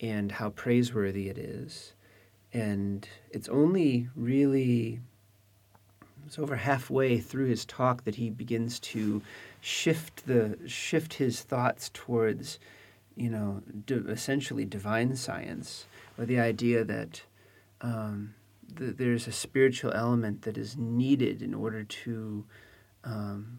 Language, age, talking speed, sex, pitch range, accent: English, 40-59, 115 wpm, male, 105-125 Hz, American